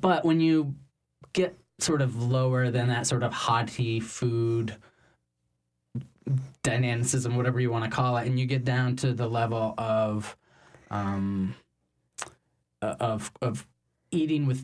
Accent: American